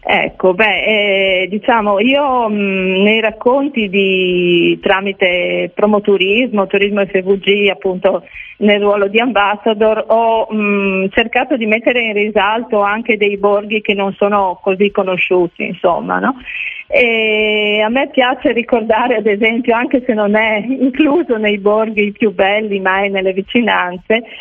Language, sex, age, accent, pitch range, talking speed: Italian, female, 40-59, native, 190-230 Hz, 135 wpm